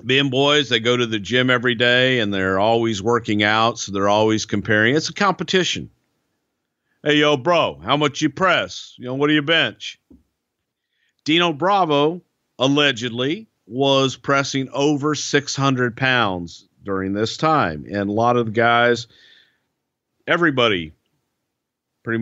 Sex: male